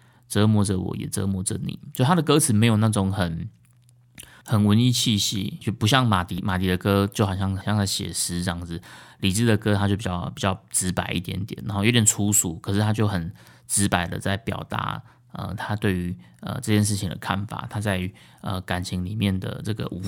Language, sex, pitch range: Chinese, male, 95-115 Hz